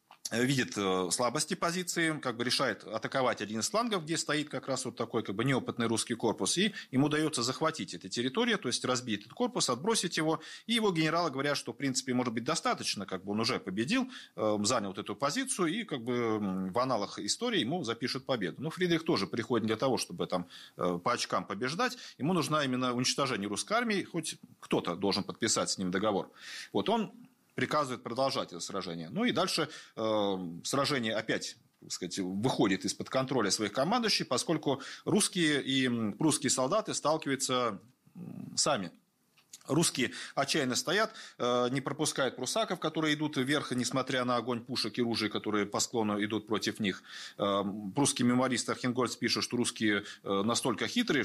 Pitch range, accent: 110-155 Hz, native